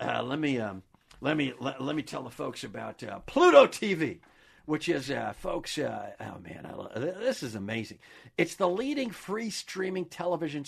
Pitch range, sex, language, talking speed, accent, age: 170-265 Hz, male, English, 190 wpm, American, 50-69